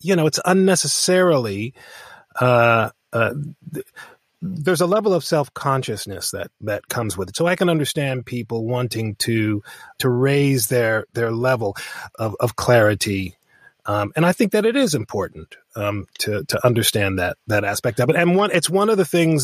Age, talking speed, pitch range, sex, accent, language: 30-49, 175 wpm, 115-145 Hz, male, American, English